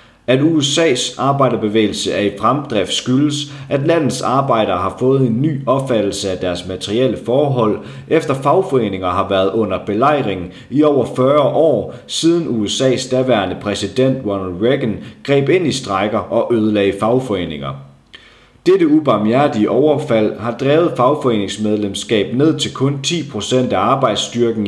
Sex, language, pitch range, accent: male, Danish, 105-140 Hz, native